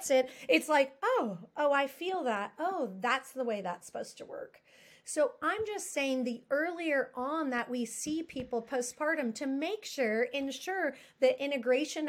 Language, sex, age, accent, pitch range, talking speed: English, female, 30-49, American, 240-295 Hz, 165 wpm